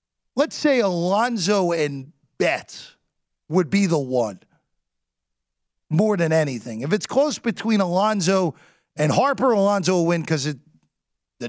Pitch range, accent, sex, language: 135-195 Hz, American, male, English